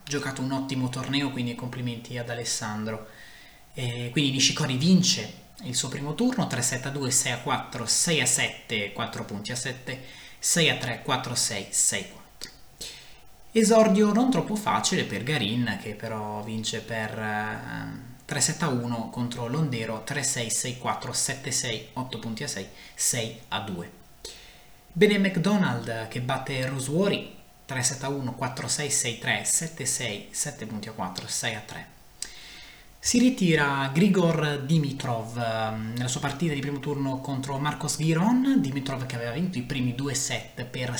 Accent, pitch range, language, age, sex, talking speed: native, 120-150 Hz, Italian, 20-39, male, 130 wpm